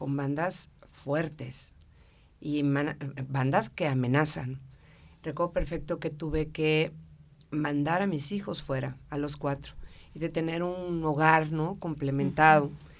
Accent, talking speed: Mexican, 130 wpm